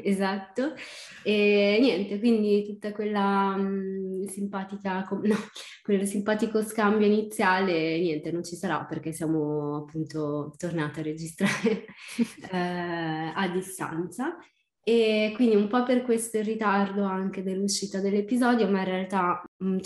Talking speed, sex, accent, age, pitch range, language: 125 wpm, female, native, 20-39, 180-215 Hz, Italian